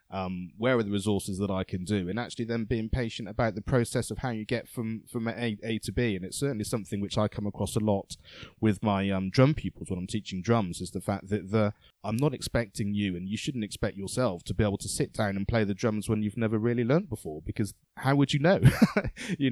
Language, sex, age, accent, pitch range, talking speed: English, male, 20-39, British, 100-120 Hz, 250 wpm